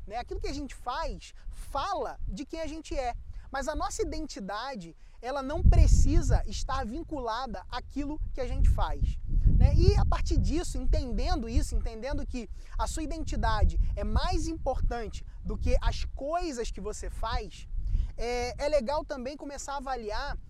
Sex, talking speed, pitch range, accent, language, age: male, 160 wpm, 240-315 Hz, Brazilian, English, 20-39